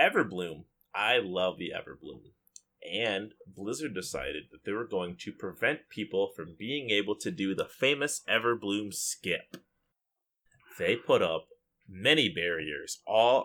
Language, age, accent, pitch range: English, 20-39, American, 100-160 Hz